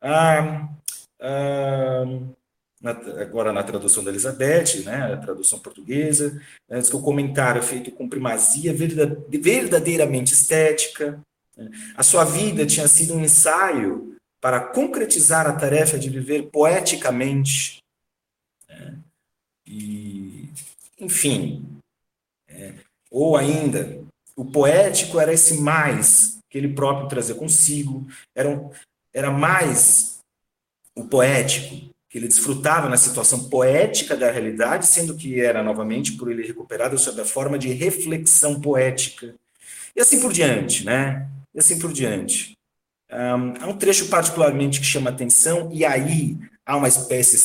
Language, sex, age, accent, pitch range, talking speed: Portuguese, male, 40-59, Brazilian, 125-160 Hz, 135 wpm